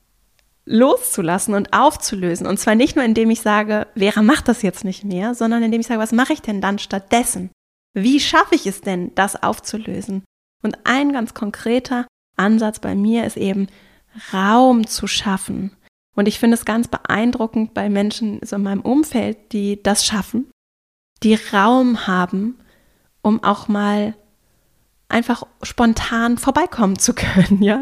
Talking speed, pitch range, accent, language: 155 wpm, 205-245 Hz, German, German